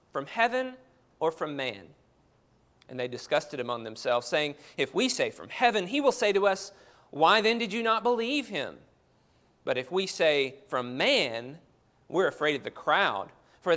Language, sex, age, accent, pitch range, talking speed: English, male, 40-59, American, 155-250 Hz, 180 wpm